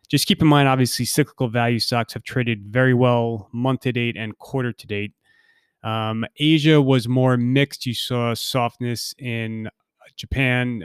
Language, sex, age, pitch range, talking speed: English, male, 30-49, 115-135 Hz, 135 wpm